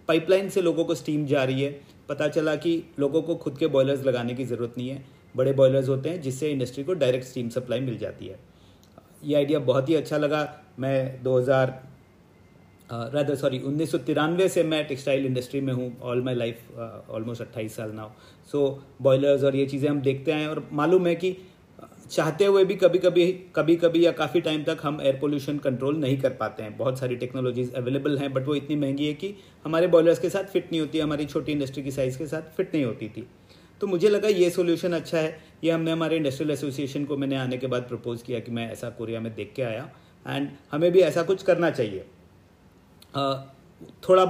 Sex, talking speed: male, 210 wpm